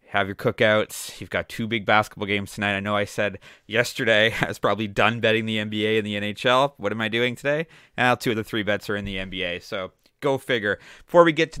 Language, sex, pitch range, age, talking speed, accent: English, male, 105-130 Hz, 30-49, 245 wpm, American